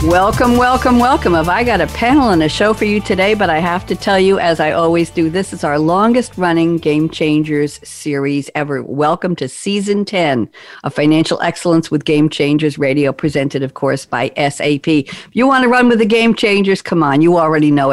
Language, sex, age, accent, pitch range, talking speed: English, female, 50-69, American, 155-215 Hz, 205 wpm